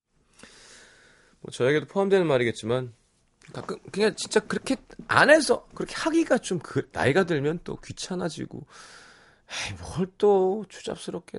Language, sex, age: Korean, male, 30-49